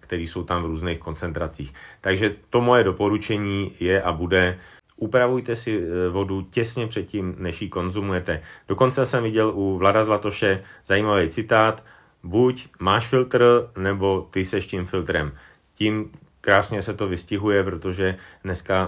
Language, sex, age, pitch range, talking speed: Slovak, male, 30-49, 90-105 Hz, 140 wpm